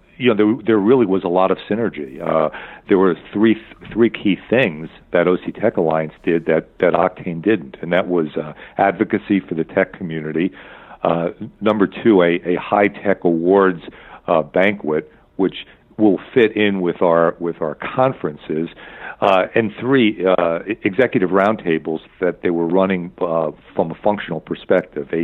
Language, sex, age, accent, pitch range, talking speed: English, male, 50-69, American, 80-95 Hz, 165 wpm